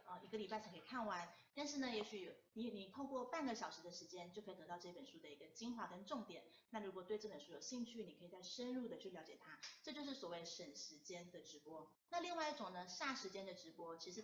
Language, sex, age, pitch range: Chinese, female, 30-49, 180-230 Hz